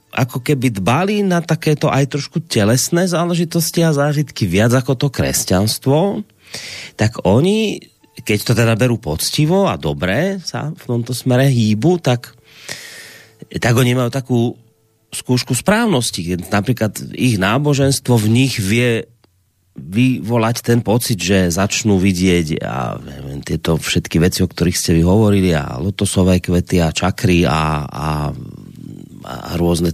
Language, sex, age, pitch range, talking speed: Slovak, male, 30-49, 100-155 Hz, 130 wpm